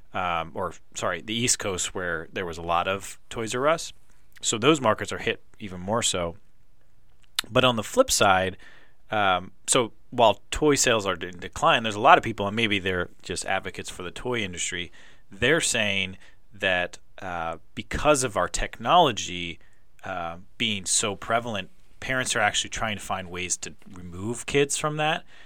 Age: 30-49